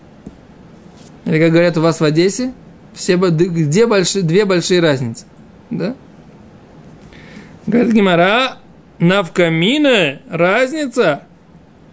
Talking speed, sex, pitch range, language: 85 wpm, male, 160-210 Hz, Russian